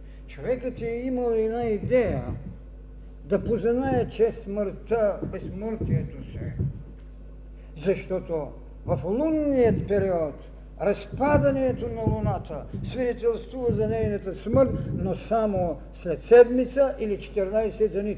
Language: Bulgarian